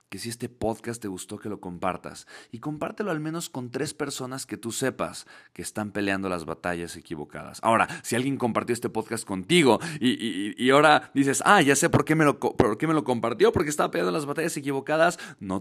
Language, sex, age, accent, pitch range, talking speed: Spanish, male, 30-49, Mexican, 90-115 Hz, 200 wpm